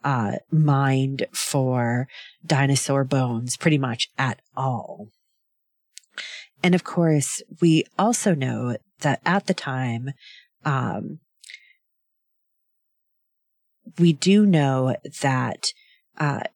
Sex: female